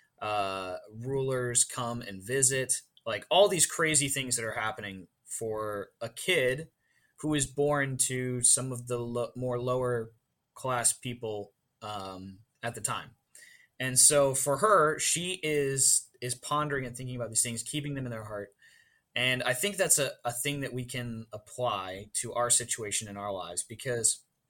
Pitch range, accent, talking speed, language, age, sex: 105-125 Hz, American, 165 wpm, English, 20-39, male